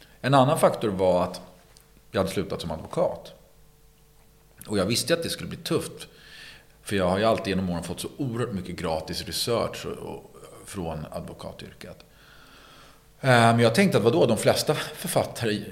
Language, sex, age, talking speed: Swedish, male, 40-59, 155 wpm